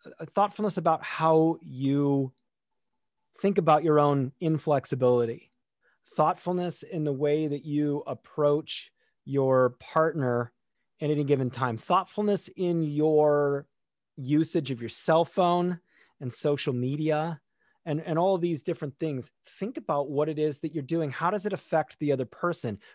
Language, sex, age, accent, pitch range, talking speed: English, male, 30-49, American, 135-165 Hz, 145 wpm